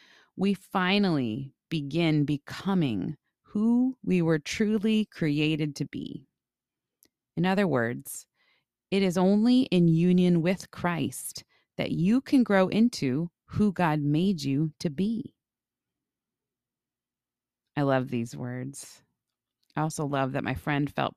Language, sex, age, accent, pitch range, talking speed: English, female, 30-49, American, 140-180 Hz, 120 wpm